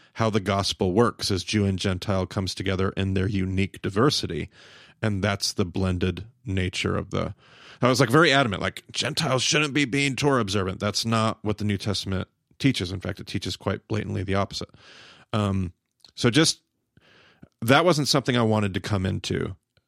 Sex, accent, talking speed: male, American, 180 wpm